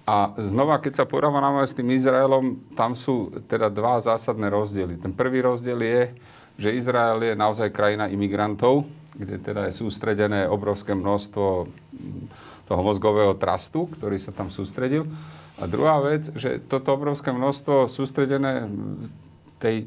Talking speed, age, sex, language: 140 wpm, 40-59, male, Slovak